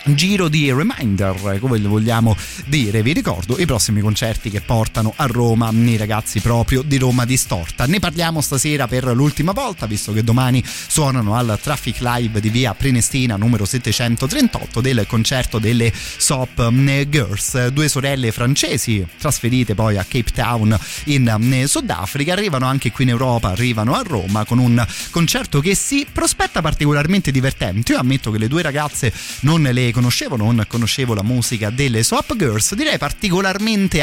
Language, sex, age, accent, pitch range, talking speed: Italian, male, 30-49, native, 110-140 Hz, 155 wpm